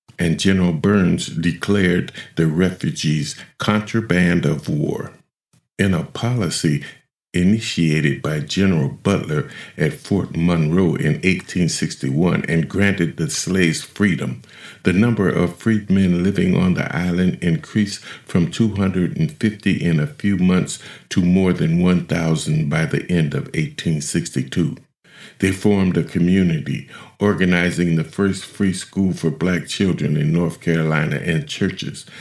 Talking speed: 125 wpm